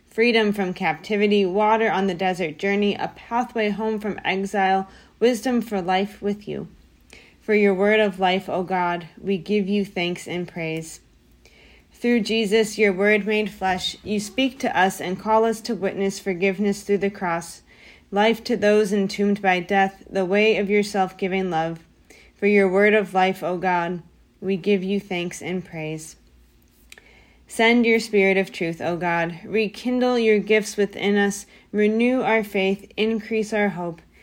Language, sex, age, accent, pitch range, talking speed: English, female, 30-49, American, 185-215 Hz, 165 wpm